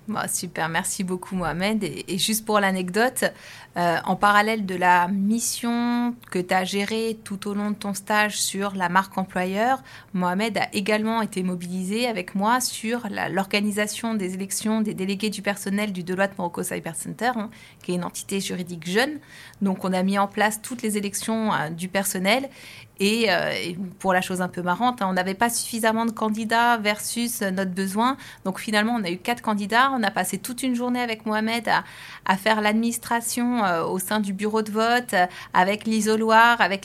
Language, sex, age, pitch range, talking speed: French, female, 30-49, 190-225 Hz, 185 wpm